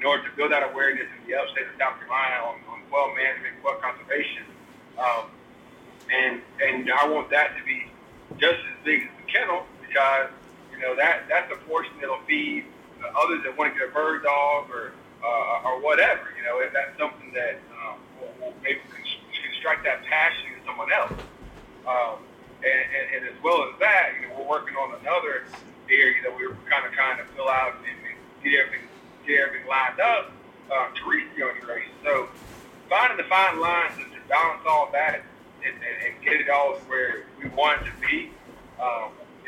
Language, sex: English, male